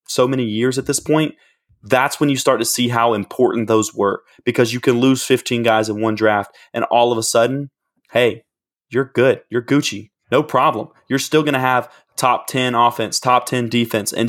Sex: male